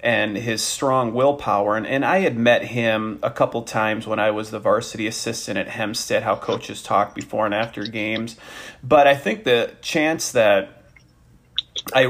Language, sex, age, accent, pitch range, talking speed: English, male, 30-49, American, 110-135 Hz, 175 wpm